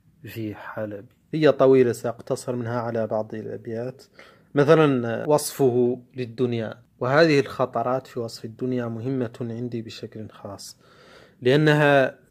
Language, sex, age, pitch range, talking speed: Arabic, male, 30-49, 115-130 Hz, 105 wpm